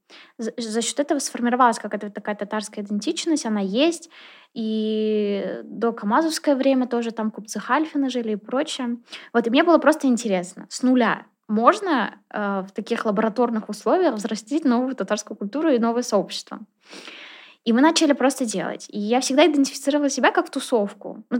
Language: Russian